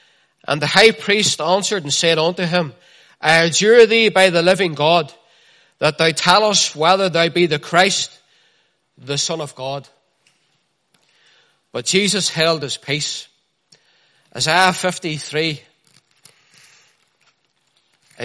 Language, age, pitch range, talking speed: English, 40-59, 145-180 Hz, 120 wpm